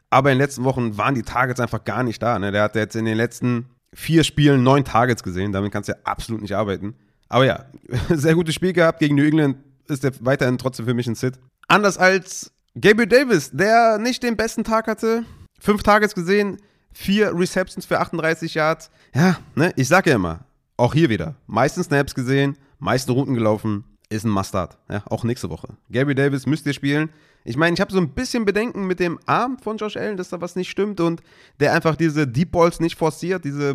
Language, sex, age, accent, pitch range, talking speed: German, male, 30-49, German, 115-165 Hz, 210 wpm